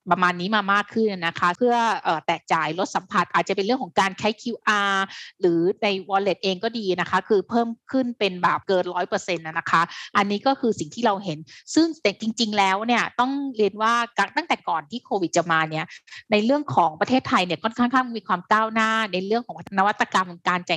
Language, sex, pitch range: Thai, female, 170-225 Hz